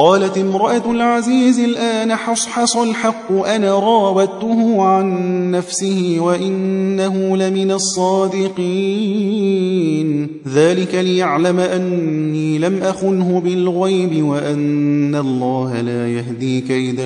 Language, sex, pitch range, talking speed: Persian, male, 145-195 Hz, 85 wpm